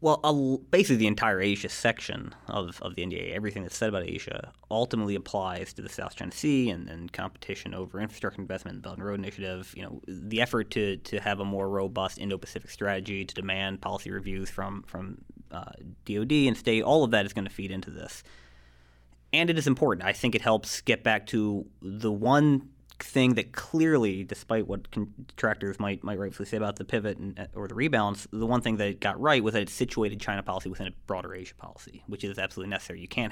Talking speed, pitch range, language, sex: 210 wpm, 95-115 Hz, English, male